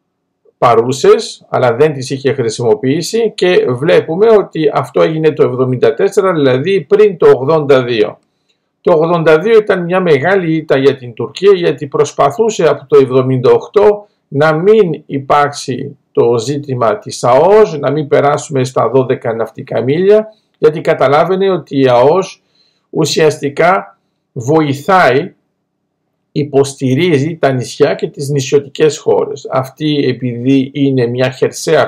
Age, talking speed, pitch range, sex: 50-69, 120 wpm, 140-220 Hz, male